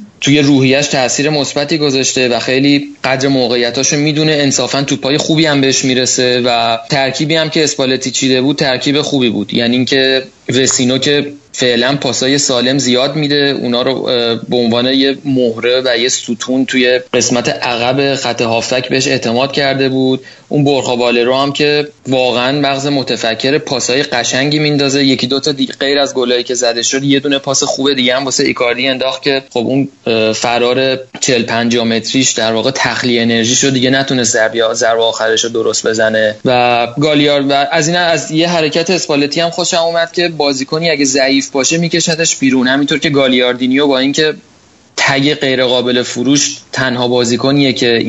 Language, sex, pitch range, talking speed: Persian, male, 125-145 Hz, 165 wpm